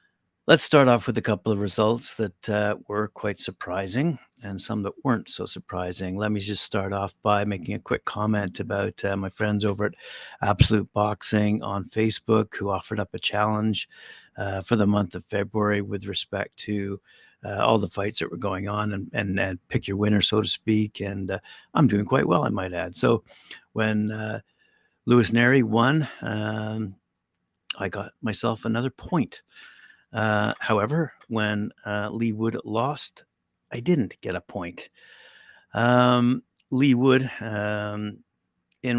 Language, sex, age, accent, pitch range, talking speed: English, male, 50-69, American, 105-115 Hz, 165 wpm